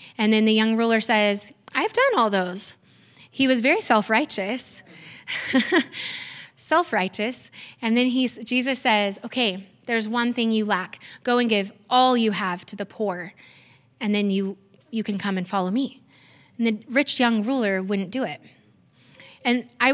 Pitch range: 200-245 Hz